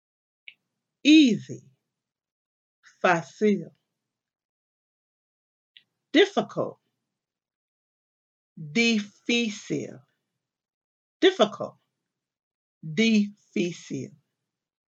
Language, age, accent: English, 60-79, American